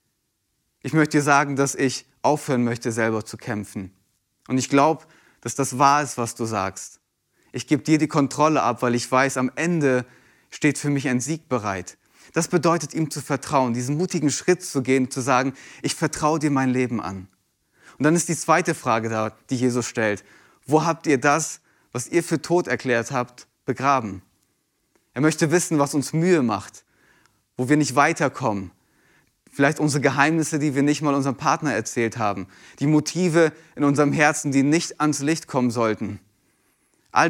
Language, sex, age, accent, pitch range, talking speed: German, male, 30-49, German, 115-145 Hz, 180 wpm